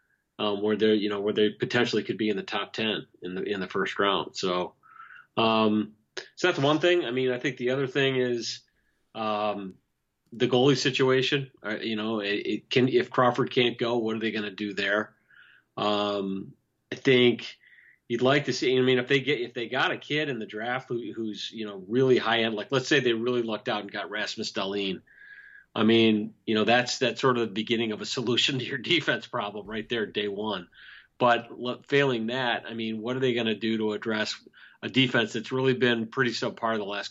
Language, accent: English, American